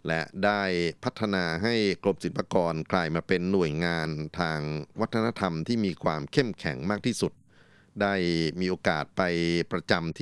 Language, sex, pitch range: Thai, male, 85-110 Hz